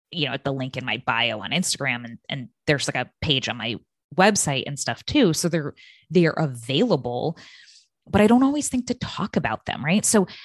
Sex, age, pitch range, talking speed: female, 20-39, 135-180 Hz, 220 wpm